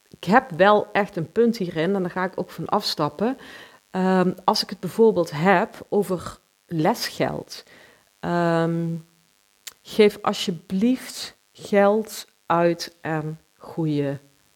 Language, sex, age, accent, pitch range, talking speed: Dutch, female, 40-59, Dutch, 170-220 Hz, 110 wpm